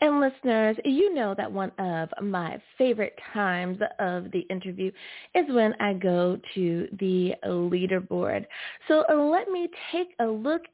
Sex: female